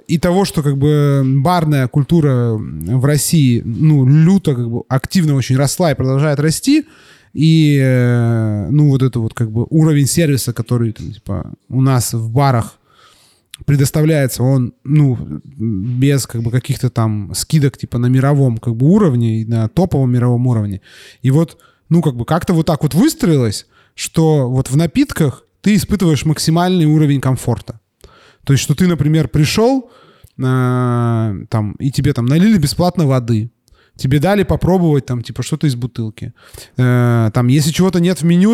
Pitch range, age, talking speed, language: 125-165 Hz, 20-39, 155 wpm, Russian